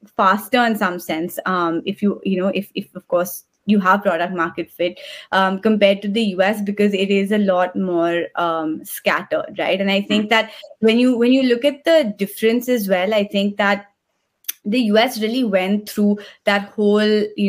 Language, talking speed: English, 195 wpm